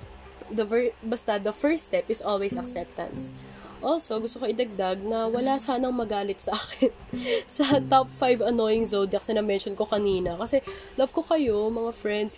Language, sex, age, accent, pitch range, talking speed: English, female, 20-39, Filipino, 200-250 Hz, 165 wpm